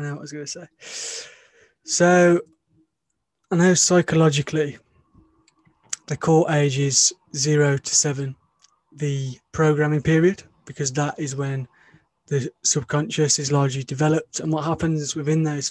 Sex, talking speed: male, 135 wpm